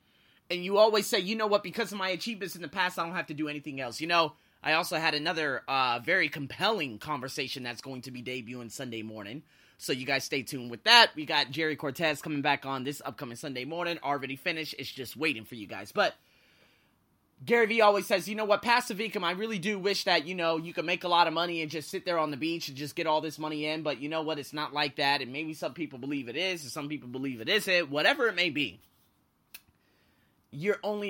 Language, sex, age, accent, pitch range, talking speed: English, male, 20-39, American, 150-225 Hz, 250 wpm